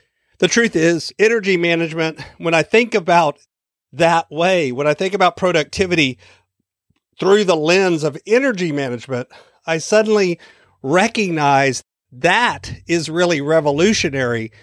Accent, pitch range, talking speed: American, 145-200 Hz, 120 wpm